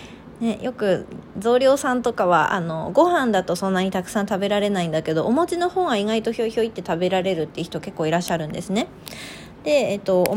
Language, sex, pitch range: Japanese, female, 180-230 Hz